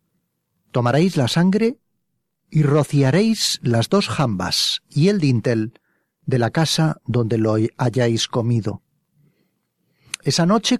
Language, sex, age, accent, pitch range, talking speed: Spanish, male, 40-59, Spanish, 125-180 Hz, 110 wpm